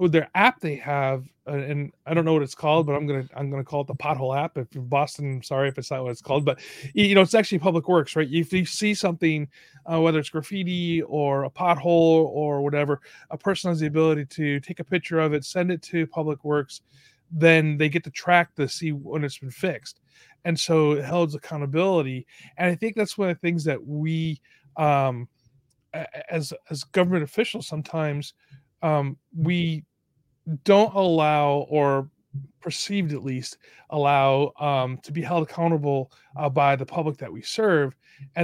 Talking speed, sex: 195 wpm, male